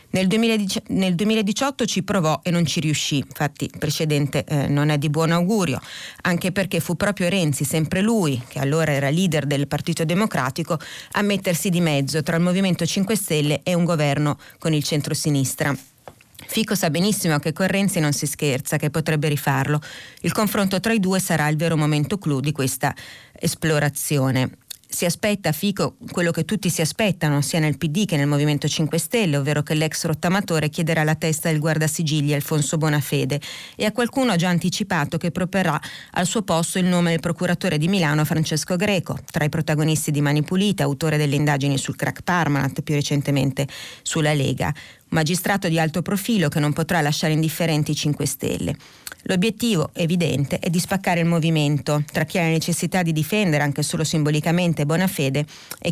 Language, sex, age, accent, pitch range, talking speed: Italian, female, 30-49, native, 150-180 Hz, 180 wpm